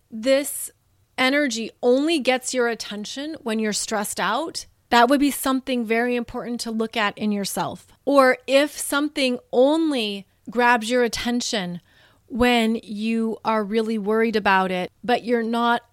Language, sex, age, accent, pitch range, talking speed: English, female, 30-49, American, 210-255 Hz, 145 wpm